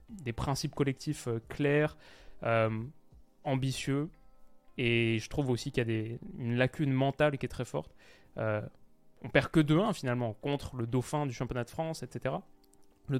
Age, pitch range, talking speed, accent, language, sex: 20-39, 120-140 Hz, 170 wpm, French, French, male